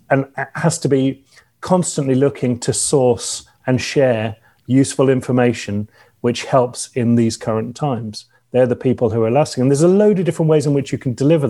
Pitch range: 115-145 Hz